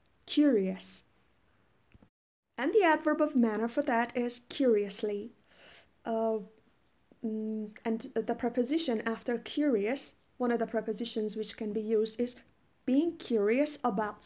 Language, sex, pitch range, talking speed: Persian, female, 215-260 Hz, 120 wpm